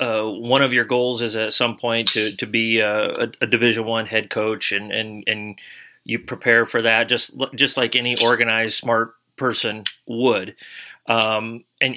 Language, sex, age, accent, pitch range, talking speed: English, male, 30-49, American, 110-130 Hz, 180 wpm